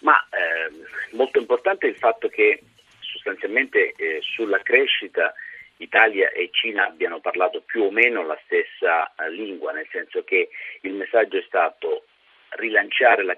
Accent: native